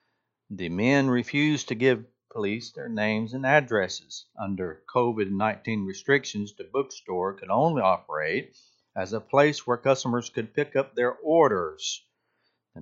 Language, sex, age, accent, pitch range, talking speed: English, male, 60-79, American, 105-140 Hz, 135 wpm